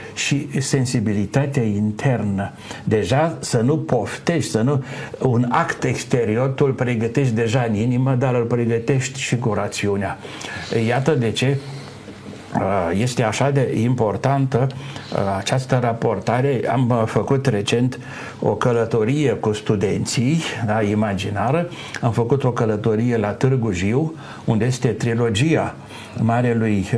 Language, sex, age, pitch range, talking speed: Romanian, male, 60-79, 110-140 Hz, 120 wpm